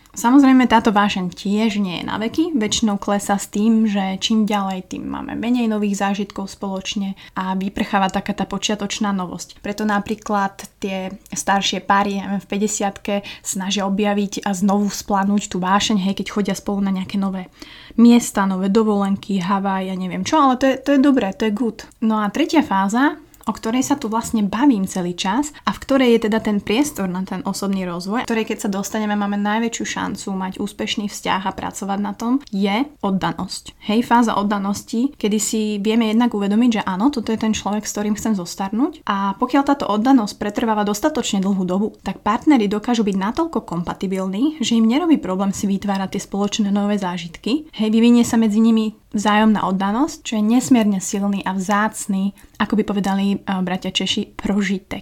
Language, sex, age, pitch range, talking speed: Slovak, female, 20-39, 195-225 Hz, 180 wpm